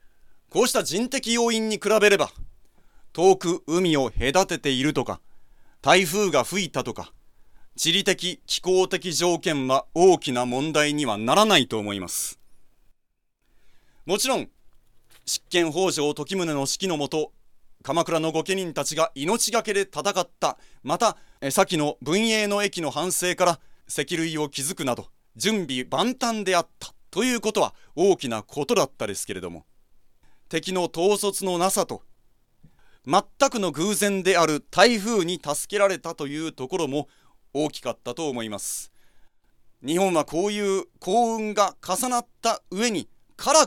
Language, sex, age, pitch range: Japanese, male, 40-59, 140-200 Hz